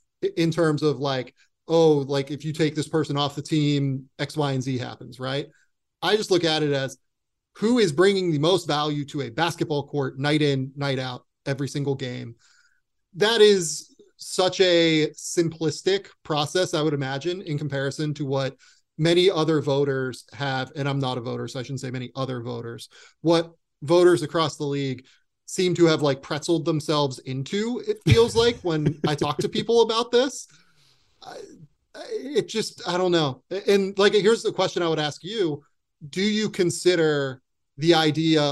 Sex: male